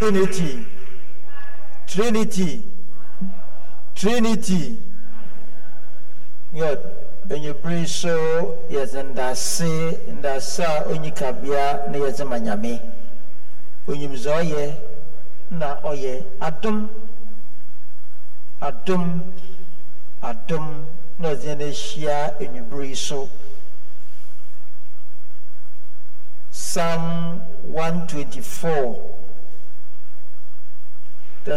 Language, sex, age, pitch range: English, male, 60-79, 150-205 Hz